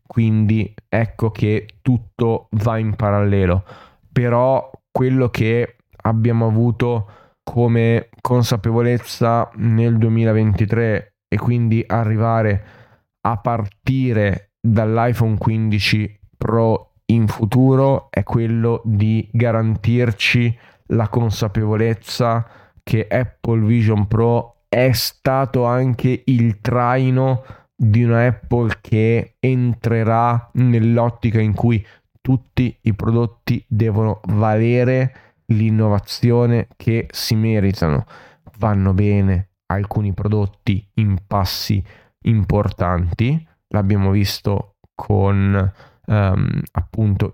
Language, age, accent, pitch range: Italian, 20-39, native, 105-120 Hz